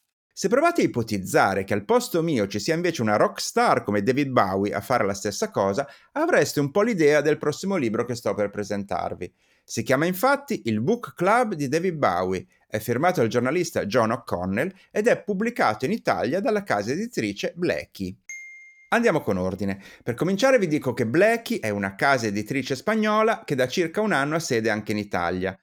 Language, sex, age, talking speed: Italian, male, 30-49, 190 wpm